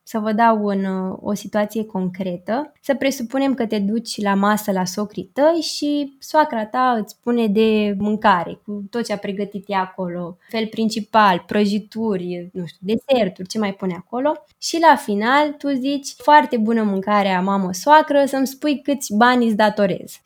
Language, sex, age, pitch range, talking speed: Romanian, female, 20-39, 200-240 Hz, 165 wpm